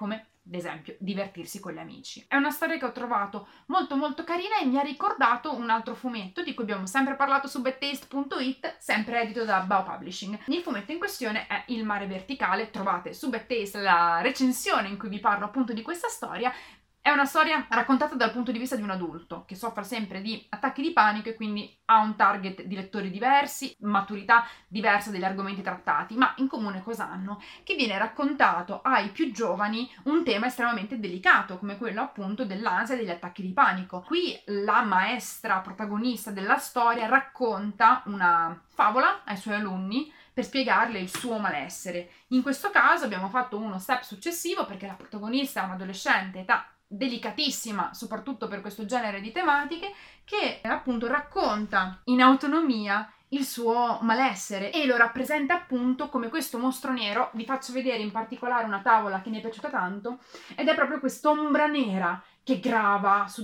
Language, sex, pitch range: Italian, female, 200-265 Hz